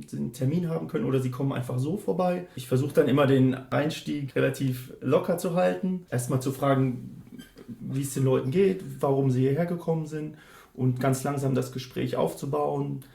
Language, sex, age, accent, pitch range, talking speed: German, male, 30-49, German, 130-155 Hz, 180 wpm